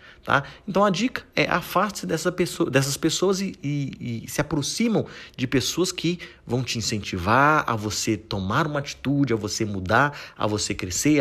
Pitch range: 115-155 Hz